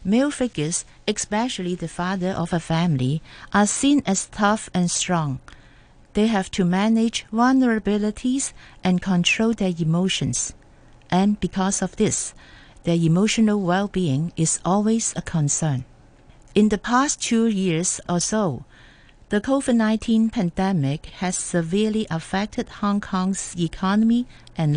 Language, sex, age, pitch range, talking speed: English, female, 50-69, 165-220 Hz, 125 wpm